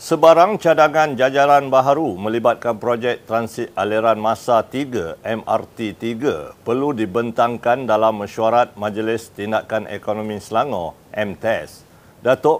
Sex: male